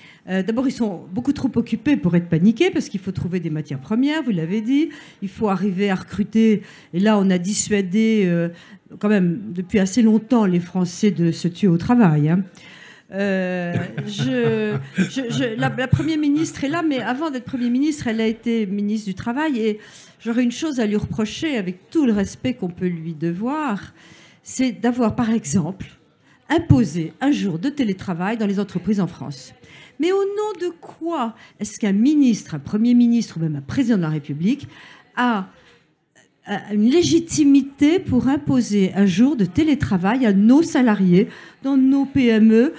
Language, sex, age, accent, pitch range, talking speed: French, female, 50-69, French, 190-265 Hz, 175 wpm